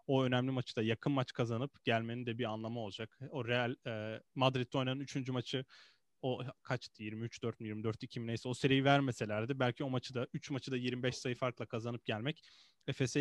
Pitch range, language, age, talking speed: 115-135 Hz, Turkish, 30-49, 190 wpm